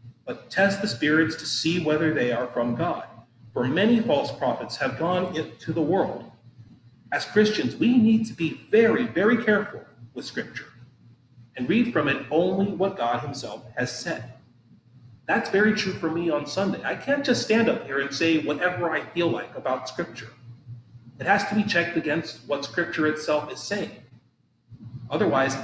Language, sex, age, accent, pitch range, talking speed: English, male, 30-49, American, 120-175 Hz, 175 wpm